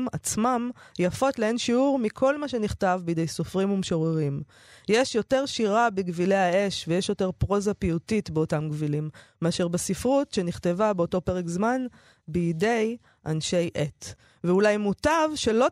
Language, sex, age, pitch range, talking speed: Hebrew, female, 20-39, 165-220 Hz, 125 wpm